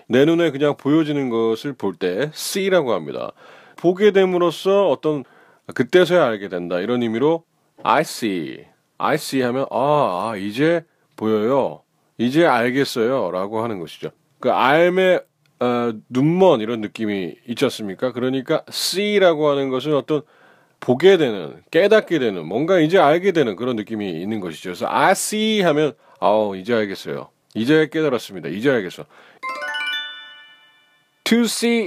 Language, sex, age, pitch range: Korean, male, 30-49, 120-175 Hz